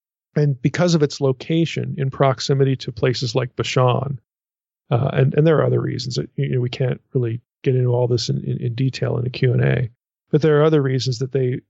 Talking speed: 225 wpm